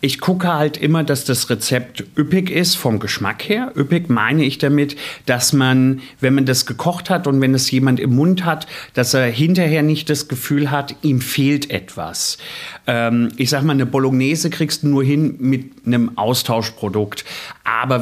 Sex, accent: male, German